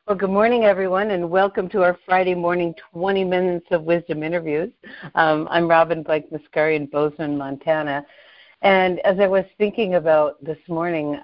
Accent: American